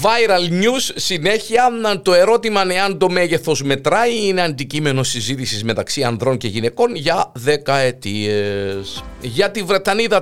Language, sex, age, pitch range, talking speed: Greek, male, 50-69, 125-200 Hz, 125 wpm